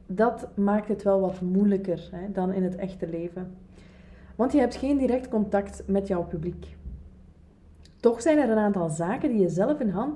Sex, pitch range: female, 185-240 Hz